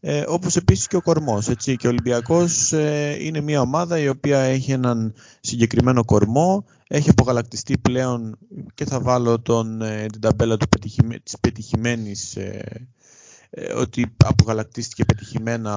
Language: Greek